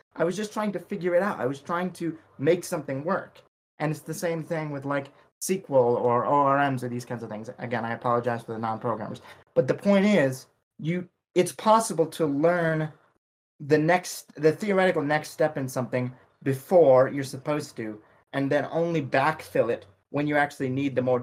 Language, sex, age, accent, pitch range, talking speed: English, male, 30-49, American, 135-175 Hz, 190 wpm